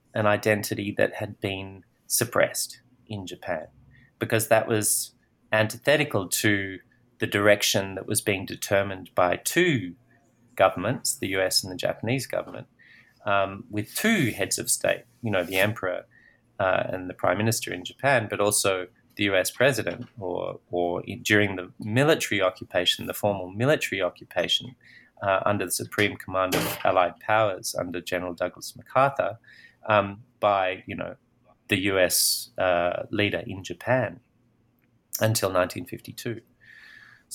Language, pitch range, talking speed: English, 95-120 Hz, 135 wpm